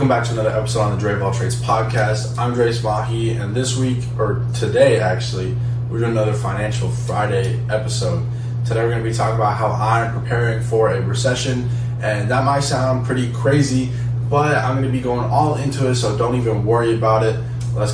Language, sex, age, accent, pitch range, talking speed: English, male, 20-39, American, 115-125 Hz, 195 wpm